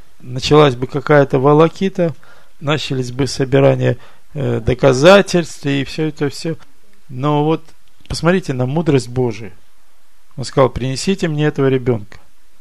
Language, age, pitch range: Russian, 50-69, 120-155 Hz